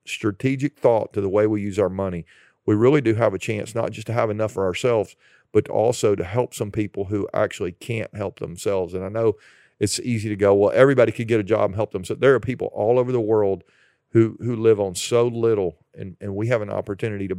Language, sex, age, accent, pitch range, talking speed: English, male, 40-59, American, 95-115 Hz, 240 wpm